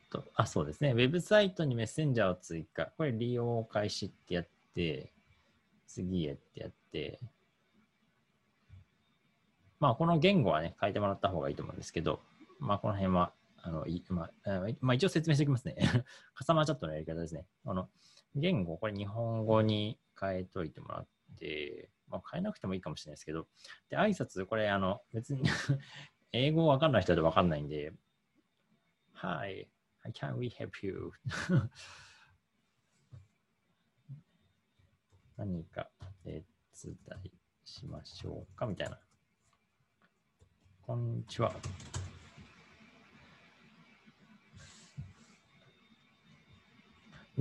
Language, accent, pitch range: Japanese, native, 95-130 Hz